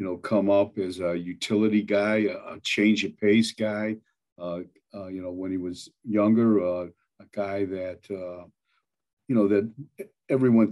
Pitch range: 105-115 Hz